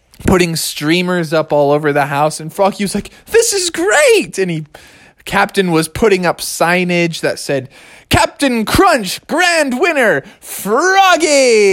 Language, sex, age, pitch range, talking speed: English, male, 20-39, 165-225 Hz, 145 wpm